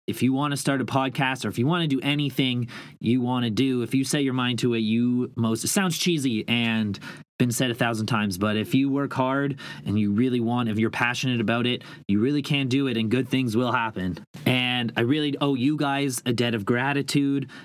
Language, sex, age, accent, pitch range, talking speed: English, male, 30-49, American, 110-135 Hz, 240 wpm